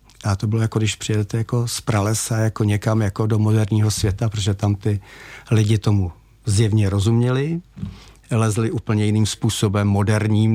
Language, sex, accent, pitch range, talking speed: Czech, male, native, 100-115 Hz, 155 wpm